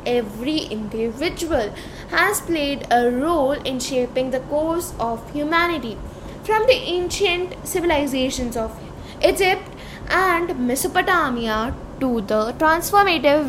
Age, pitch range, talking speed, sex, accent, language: 10-29, 260-365 Hz, 100 wpm, female, Indian, English